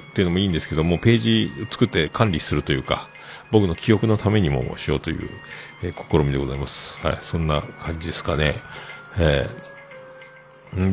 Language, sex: Japanese, male